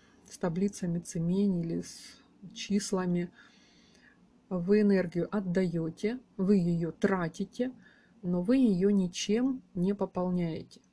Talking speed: 95 wpm